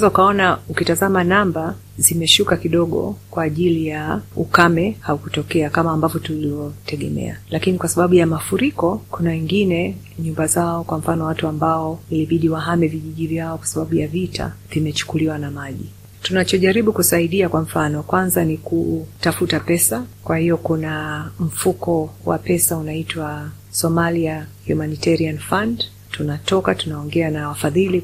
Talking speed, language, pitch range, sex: 125 wpm, Swahili, 155-175 Hz, female